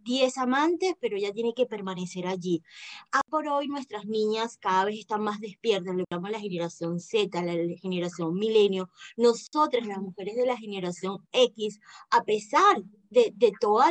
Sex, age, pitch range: female, 20-39, 180-240 Hz